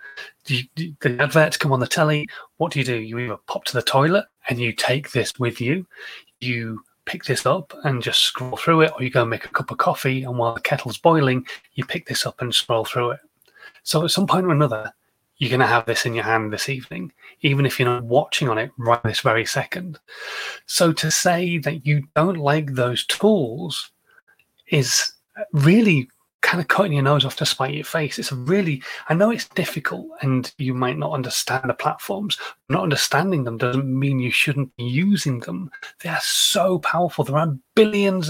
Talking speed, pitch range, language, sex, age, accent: 210 wpm, 125-165 Hz, English, male, 30-49, British